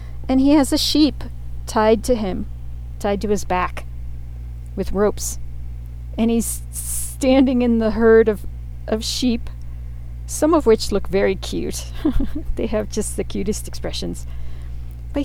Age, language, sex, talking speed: 40-59, English, female, 140 wpm